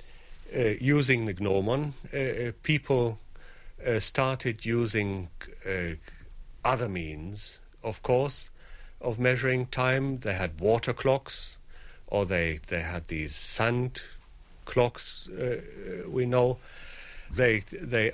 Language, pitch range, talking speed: English, 90-125 Hz, 110 wpm